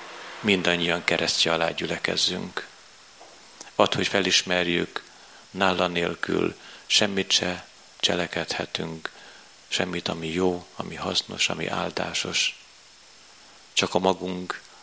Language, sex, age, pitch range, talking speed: Hungarian, male, 40-59, 85-95 Hz, 90 wpm